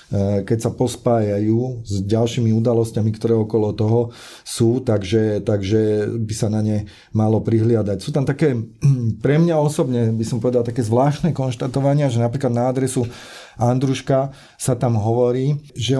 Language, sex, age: Slovak, male, 40-59